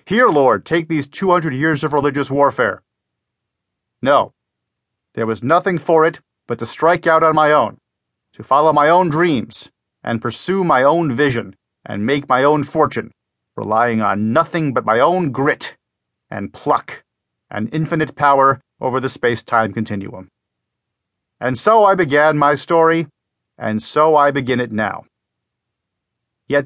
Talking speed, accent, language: 150 wpm, American, English